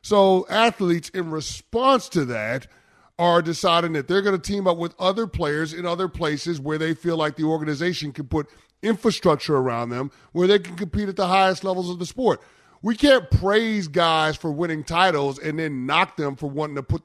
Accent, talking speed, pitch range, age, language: American, 200 wpm, 155-195 Hz, 30-49, English